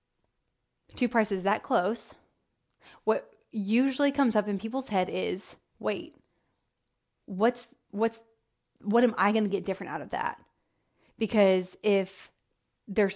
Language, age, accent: English, 30-49, American